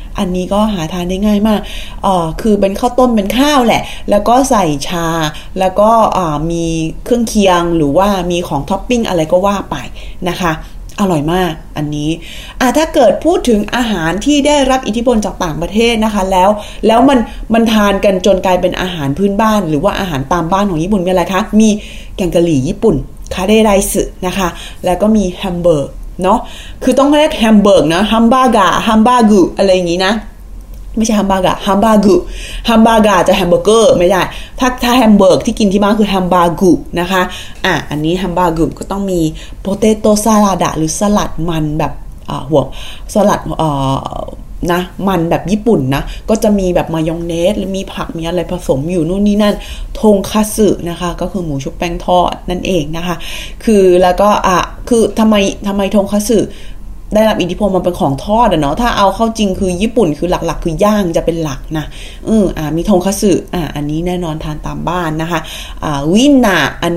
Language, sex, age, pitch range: Thai, female, 20-39, 170-215 Hz